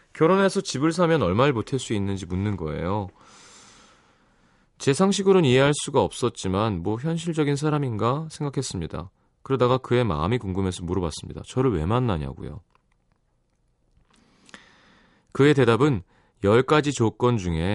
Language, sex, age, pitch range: Korean, male, 30-49, 95-145 Hz